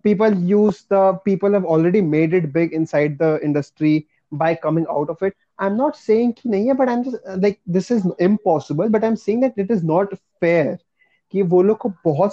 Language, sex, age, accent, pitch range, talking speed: Hindi, male, 20-39, native, 160-200 Hz, 210 wpm